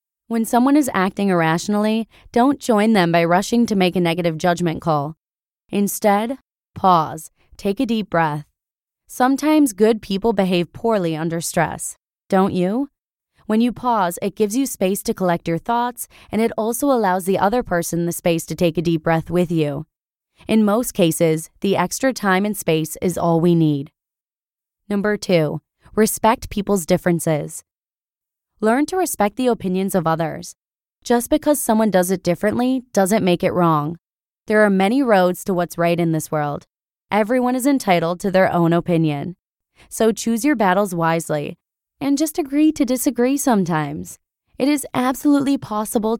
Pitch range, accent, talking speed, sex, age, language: 170-230 Hz, American, 160 wpm, female, 20-39, English